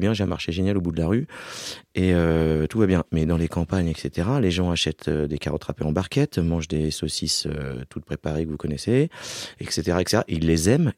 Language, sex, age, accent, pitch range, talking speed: French, male, 30-49, French, 90-110 Hz, 230 wpm